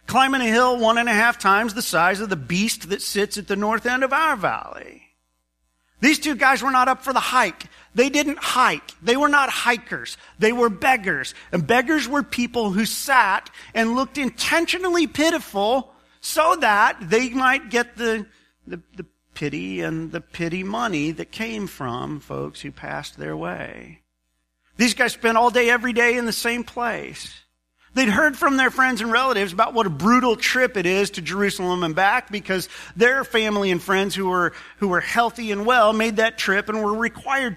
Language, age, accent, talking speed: English, 40-59, American, 190 wpm